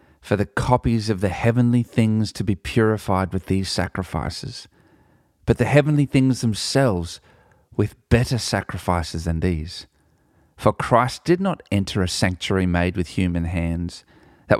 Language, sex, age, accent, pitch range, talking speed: English, male, 30-49, Australian, 90-110 Hz, 145 wpm